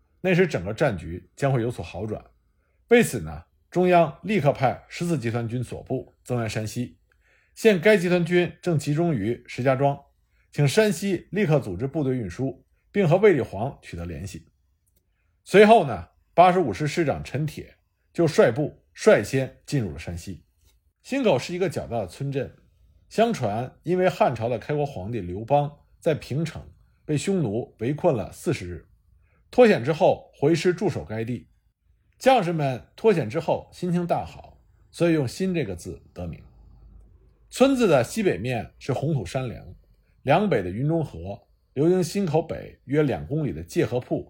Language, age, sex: Chinese, 50-69, male